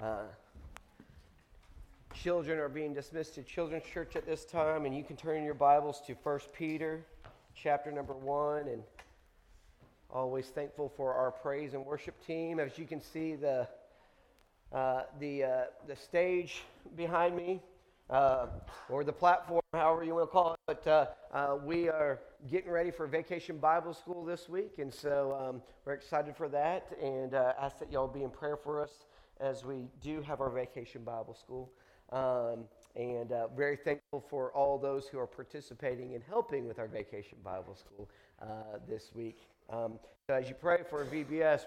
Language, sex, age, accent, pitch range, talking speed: English, male, 40-59, American, 125-155 Hz, 175 wpm